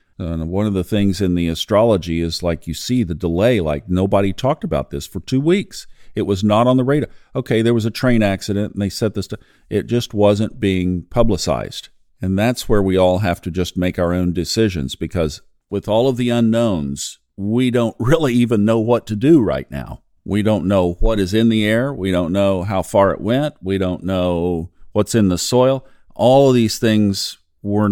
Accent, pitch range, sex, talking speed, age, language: American, 90-115 Hz, male, 210 wpm, 50-69, English